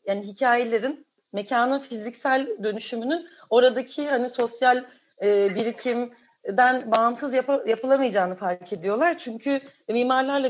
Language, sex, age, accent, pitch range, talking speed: Turkish, female, 40-59, native, 215-265 Hz, 90 wpm